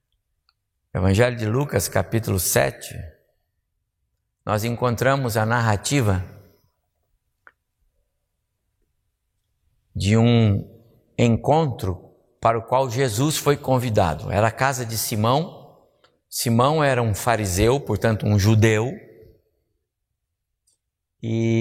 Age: 60-79